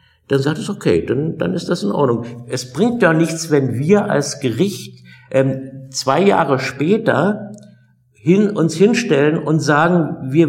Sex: male